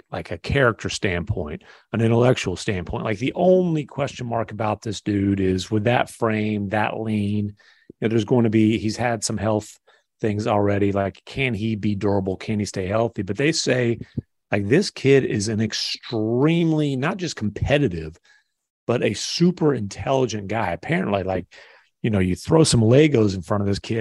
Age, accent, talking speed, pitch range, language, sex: 40-59, American, 180 wpm, 100-130 Hz, English, male